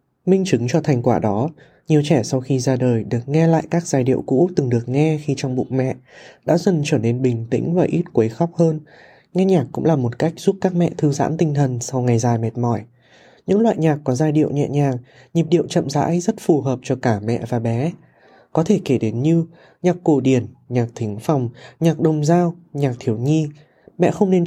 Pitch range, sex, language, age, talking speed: 125-160 Hz, male, Vietnamese, 20-39, 235 wpm